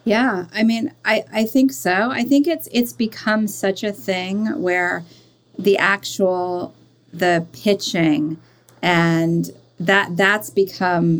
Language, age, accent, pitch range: English, 40-59, American, 170-225 Hz